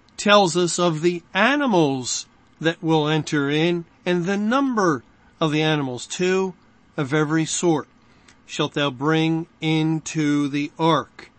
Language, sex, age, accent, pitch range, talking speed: English, male, 40-59, American, 145-175 Hz, 130 wpm